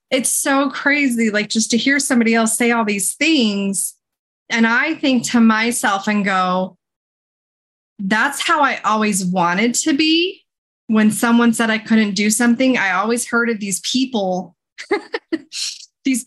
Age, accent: 20-39, American